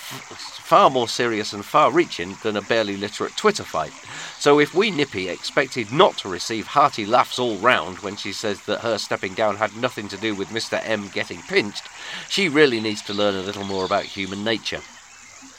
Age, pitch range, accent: 40-59, 100-130 Hz, British